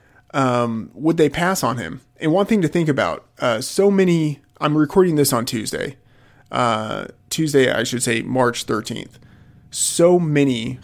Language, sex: English, male